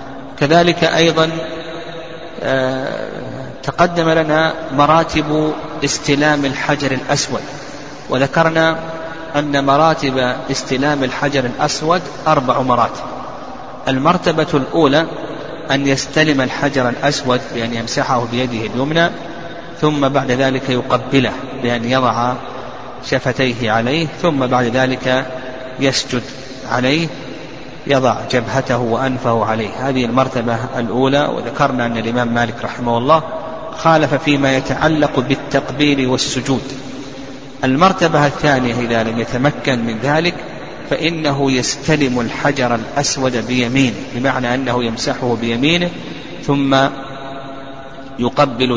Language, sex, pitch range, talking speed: Arabic, male, 125-150 Hz, 90 wpm